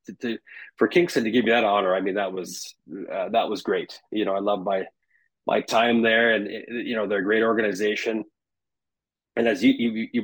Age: 30-49